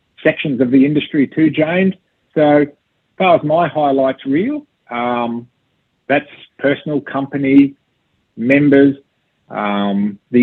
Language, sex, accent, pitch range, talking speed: English, male, Australian, 110-145 Hz, 115 wpm